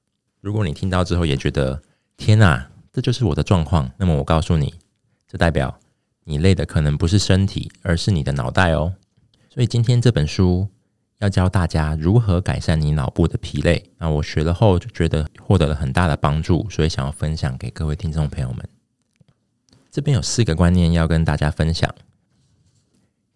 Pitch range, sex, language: 75-100 Hz, male, Chinese